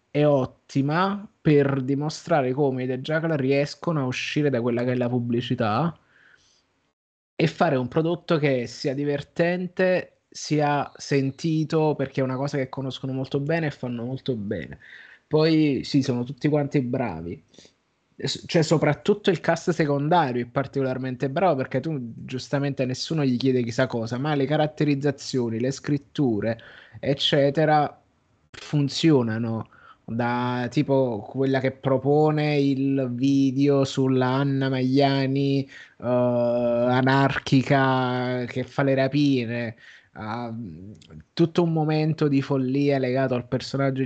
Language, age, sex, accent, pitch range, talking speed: Italian, 20-39, male, native, 130-150 Hz, 125 wpm